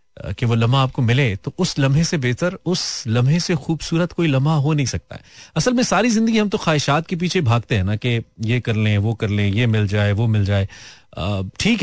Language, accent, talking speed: Hindi, native, 235 wpm